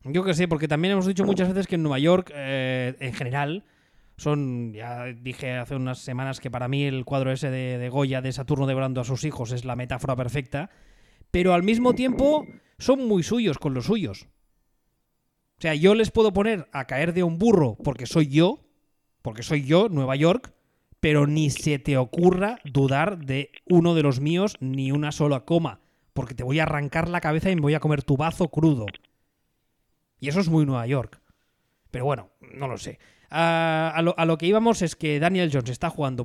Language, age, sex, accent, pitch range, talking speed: Spanish, 20-39, male, Spanish, 130-165 Hz, 205 wpm